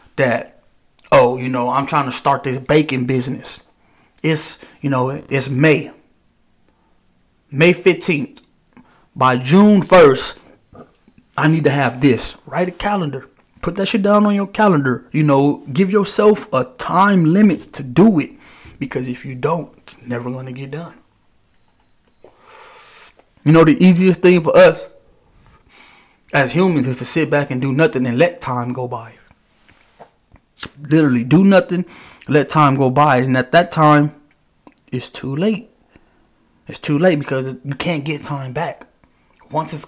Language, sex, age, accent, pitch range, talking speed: English, male, 30-49, American, 130-165 Hz, 155 wpm